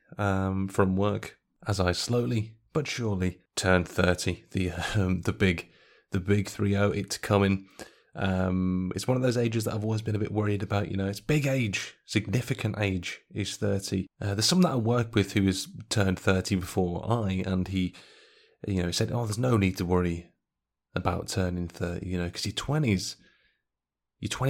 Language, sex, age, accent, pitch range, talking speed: English, male, 30-49, British, 95-115 Hz, 185 wpm